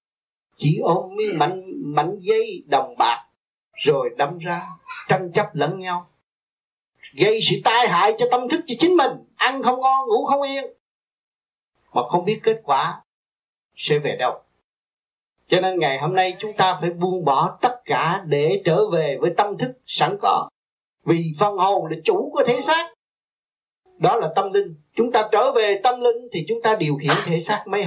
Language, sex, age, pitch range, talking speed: Vietnamese, male, 30-49, 160-245 Hz, 180 wpm